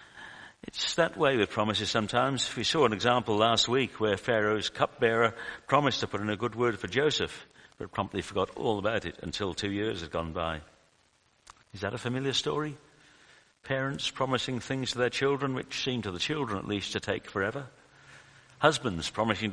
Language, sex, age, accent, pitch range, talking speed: English, male, 60-79, British, 95-125 Hz, 180 wpm